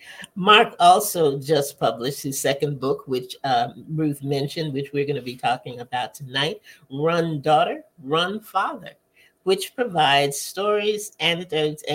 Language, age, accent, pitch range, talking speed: English, 50-69, American, 145-190 Hz, 135 wpm